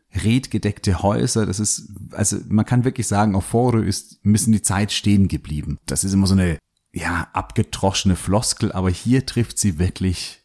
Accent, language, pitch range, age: German, German, 85-110 Hz, 40-59